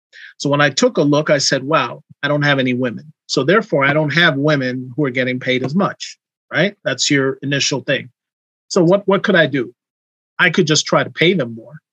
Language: English